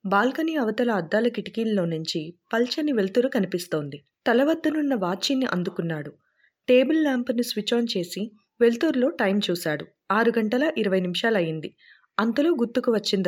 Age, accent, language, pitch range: 30-49, native, Telugu, 185-250 Hz